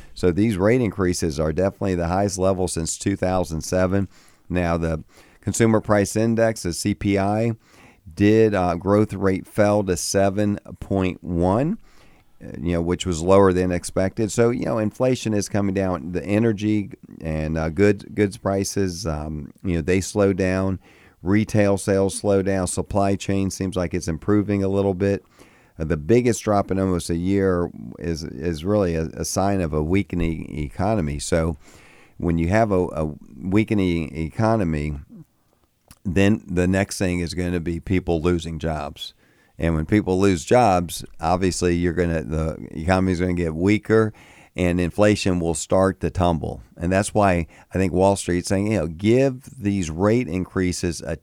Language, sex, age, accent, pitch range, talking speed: English, male, 40-59, American, 85-100 Hz, 160 wpm